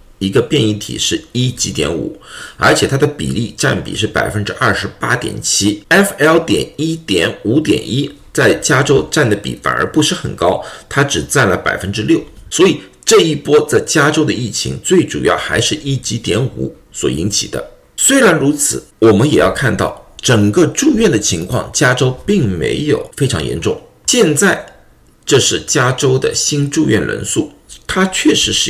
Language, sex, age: Chinese, male, 50-69